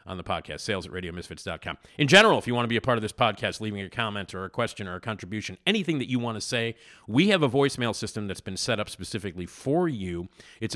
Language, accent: English, American